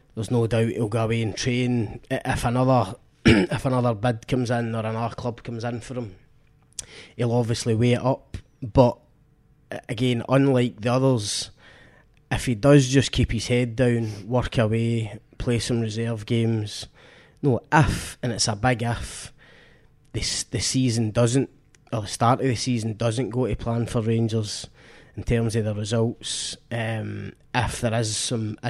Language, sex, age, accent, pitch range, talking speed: English, male, 20-39, British, 110-125 Hz, 165 wpm